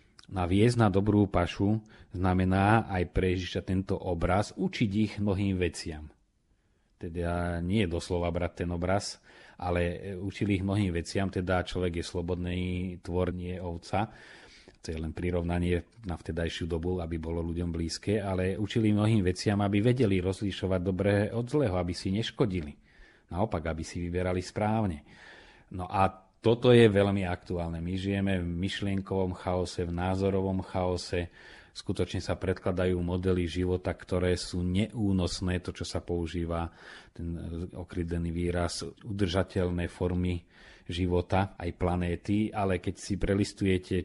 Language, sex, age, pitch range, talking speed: Slovak, male, 30-49, 90-100 Hz, 135 wpm